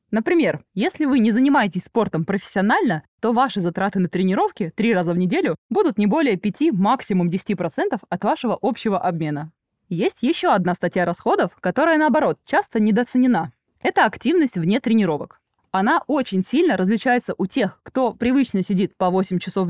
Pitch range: 185-260 Hz